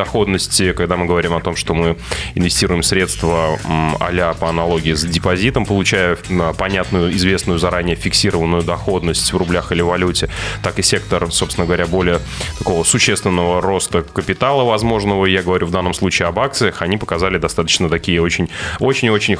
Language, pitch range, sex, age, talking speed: Russian, 85-100 Hz, male, 20-39, 150 wpm